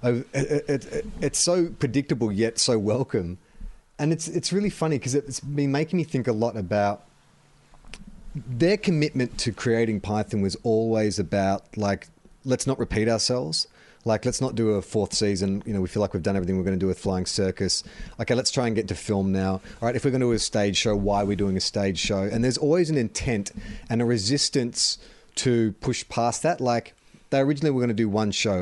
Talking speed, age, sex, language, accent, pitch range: 210 wpm, 30-49, male, English, Australian, 105-130 Hz